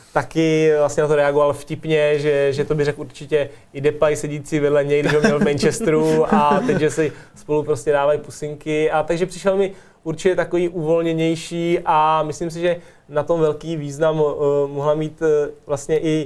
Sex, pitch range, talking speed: male, 145-160 Hz, 175 wpm